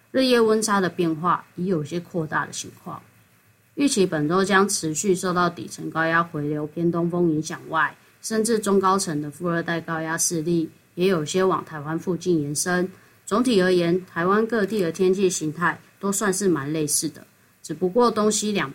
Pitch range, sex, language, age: 165-195 Hz, female, Chinese, 20-39